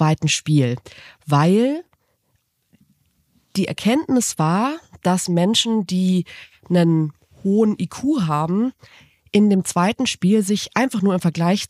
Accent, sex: German, female